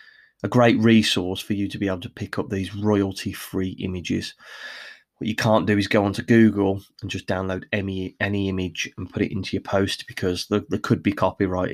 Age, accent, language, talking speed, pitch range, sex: 20-39, British, English, 205 wpm, 95-120 Hz, male